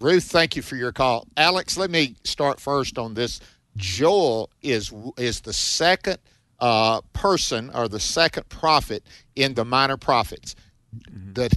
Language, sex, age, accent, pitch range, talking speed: English, male, 50-69, American, 115-155 Hz, 150 wpm